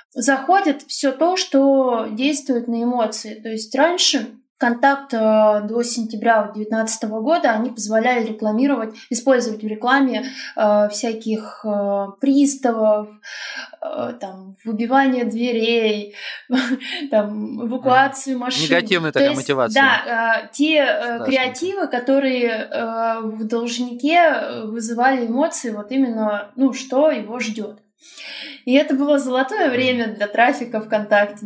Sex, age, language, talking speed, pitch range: female, 20-39, Russian, 100 wpm, 225-280 Hz